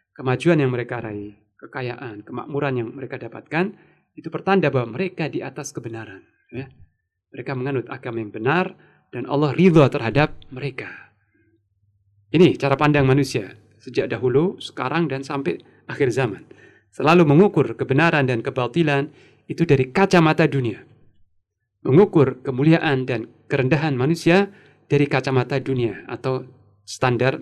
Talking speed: 125 wpm